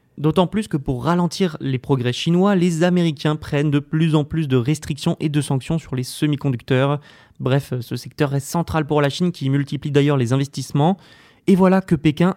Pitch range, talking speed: 135-160 Hz, 195 wpm